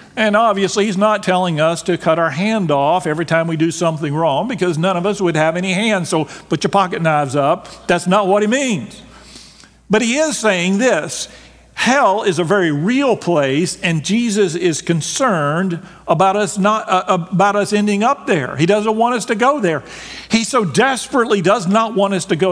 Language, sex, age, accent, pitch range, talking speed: English, male, 50-69, American, 170-225 Hz, 205 wpm